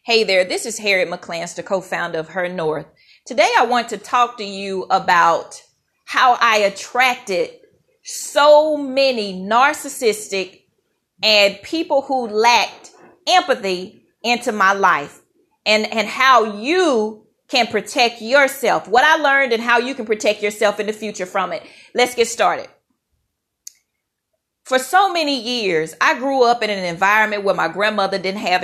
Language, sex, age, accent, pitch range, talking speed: English, female, 40-59, American, 205-275 Hz, 150 wpm